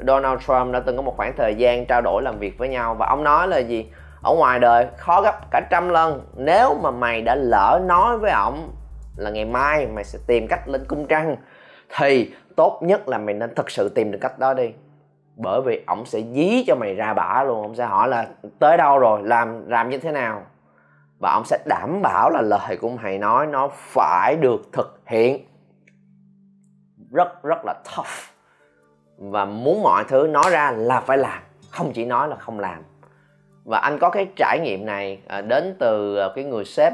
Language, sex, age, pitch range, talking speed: Vietnamese, male, 20-39, 100-155 Hz, 205 wpm